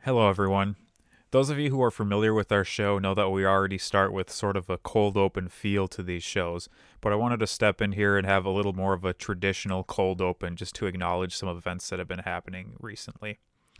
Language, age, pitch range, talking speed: English, 30-49, 95-110 Hz, 235 wpm